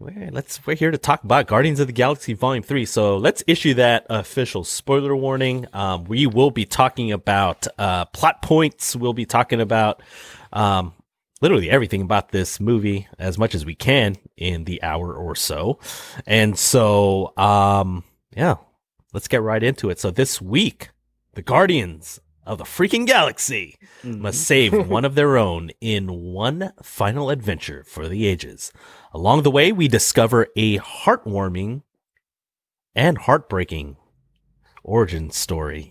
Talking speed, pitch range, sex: 150 wpm, 95-135 Hz, male